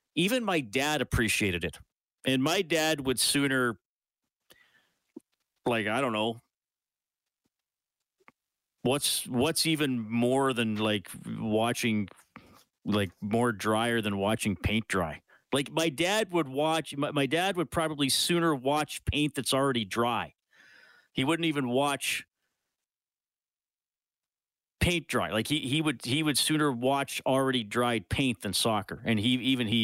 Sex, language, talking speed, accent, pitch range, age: male, English, 135 wpm, American, 115-160 Hz, 40-59